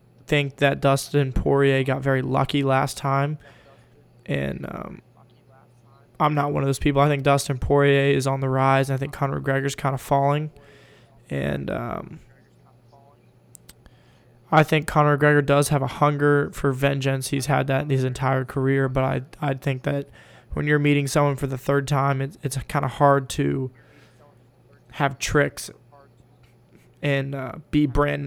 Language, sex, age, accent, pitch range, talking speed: English, male, 20-39, American, 130-145 Hz, 165 wpm